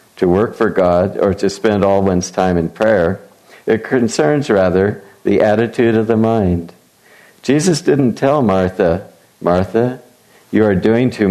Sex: male